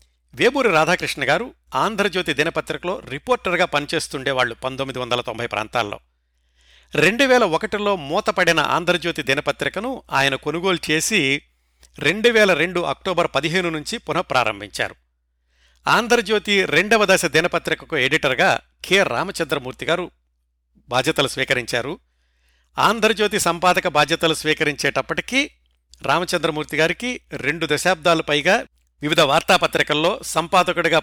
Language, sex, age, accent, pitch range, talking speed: Telugu, male, 60-79, native, 125-180 Hz, 90 wpm